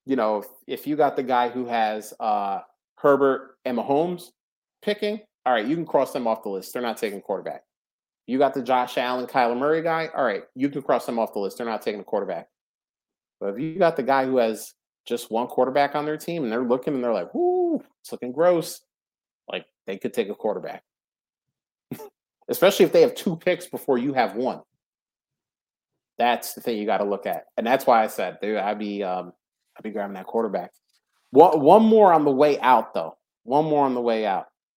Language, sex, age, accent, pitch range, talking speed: English, male, 30-49, American, 120-180 Hz, 215 wpm